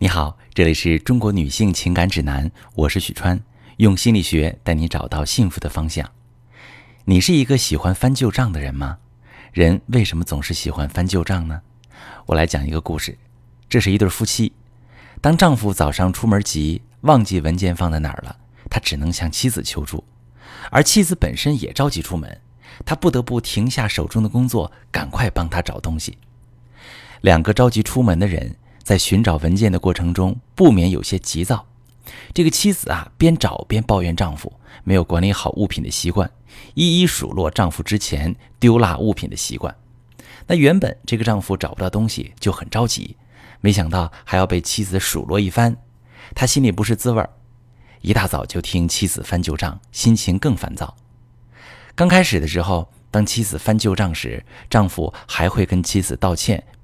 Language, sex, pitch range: Chinese, male, 85-120 Hz